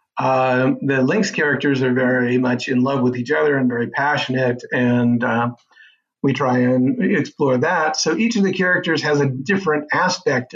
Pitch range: 120-140 Hz